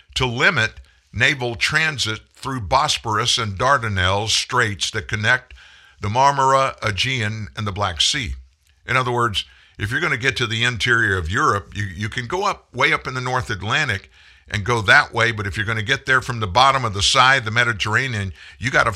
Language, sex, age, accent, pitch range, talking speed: English, male, 50-69, American, 90-125 Hz, 205 wpm